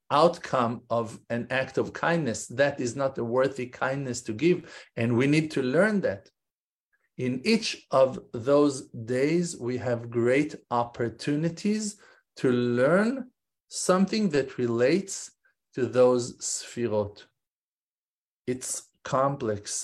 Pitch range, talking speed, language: 110-130 Hz, 115 wpm, English